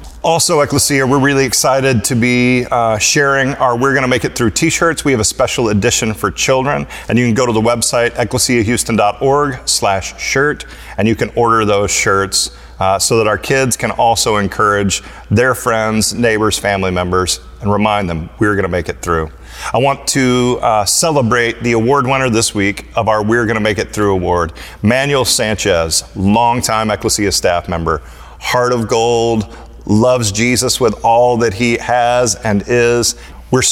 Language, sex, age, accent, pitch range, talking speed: English, male, 40-59, American, 105-125 Hz, 175 wpm